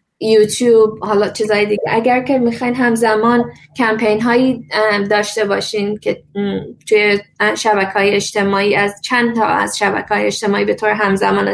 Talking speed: 125 wpm